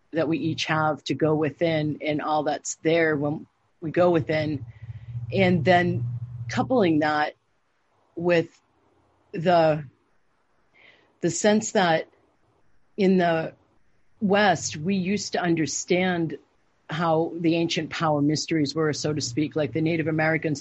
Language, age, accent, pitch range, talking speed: English, 40-59, American, 150-175 Hz, 130 wpm